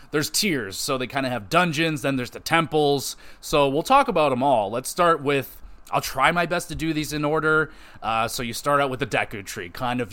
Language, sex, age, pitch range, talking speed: English, male, 30-49, 120-155 Hz, 245 wpm